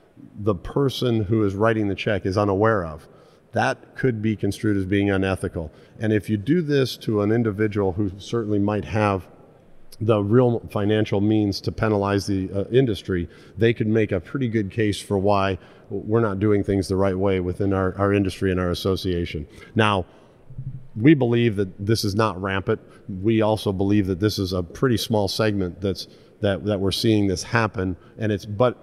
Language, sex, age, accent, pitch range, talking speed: English, male, 40-59, American, 95-110 Hz, 185 wpm